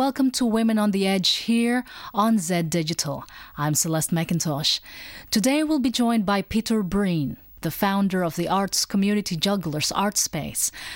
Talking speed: 155 wpm